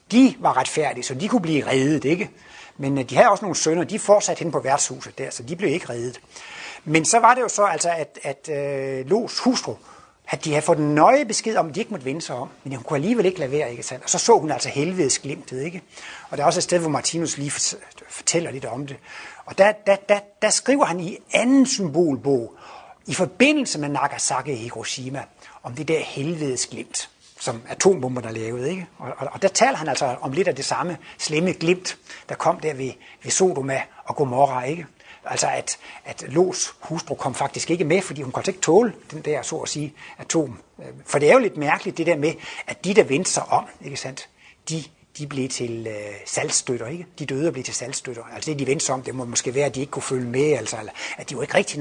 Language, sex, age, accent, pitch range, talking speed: Danish, male, 60-79, native, 135-180 Hz, 230 wpm